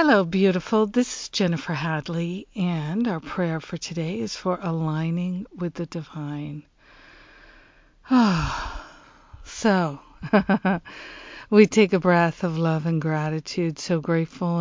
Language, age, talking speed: English, 50-69, 125 wpm